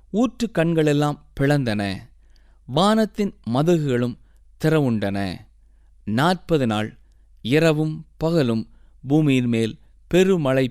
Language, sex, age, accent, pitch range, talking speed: Tamil, male, 20-39, native, 115-180 Hz, 75 wpm